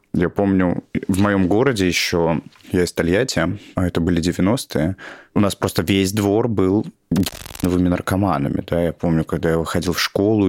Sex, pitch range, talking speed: male, 85-105 Hz, 165 wpm